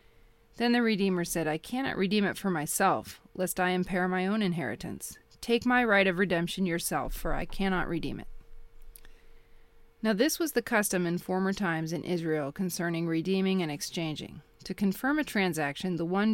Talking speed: 175 wpm